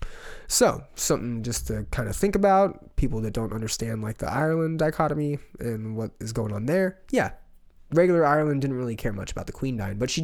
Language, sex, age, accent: English, male, 20-39, American